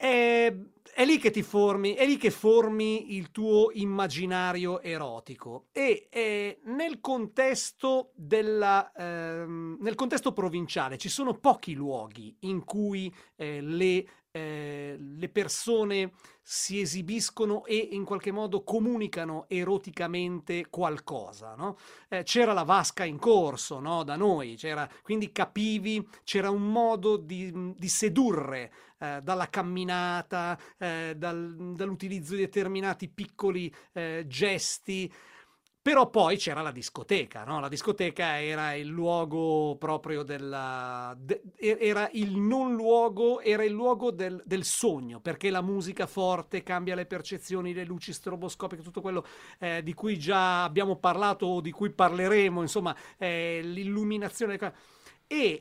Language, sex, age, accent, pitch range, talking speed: Italian, male, 40-59, native, 170-215 Hz, 125 wpm